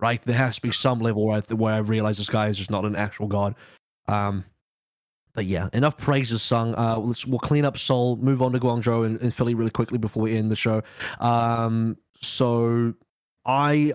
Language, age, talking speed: English, 20-39, 210 wpm